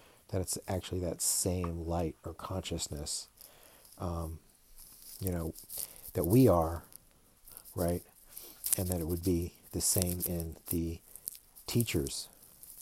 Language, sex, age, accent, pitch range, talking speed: English, male, 50-69, American, 85-100 Hz, 115 wpm